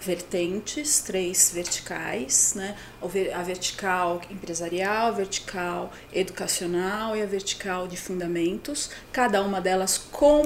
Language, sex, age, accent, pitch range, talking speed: Portuguese, female, 30-49, Brazilian, 190-240 Hz, 110 wpm